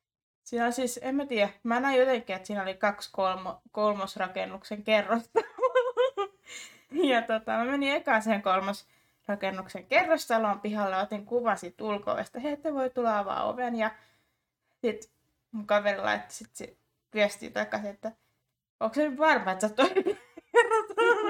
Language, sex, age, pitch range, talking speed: Finnish, female, 20-39, 200-275 Hz, 135 wpm